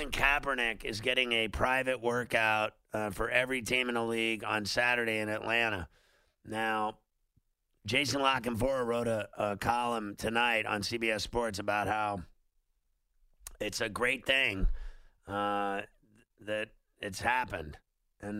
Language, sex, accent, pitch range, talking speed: English, male, American, 105-125 Hz, 135 wpm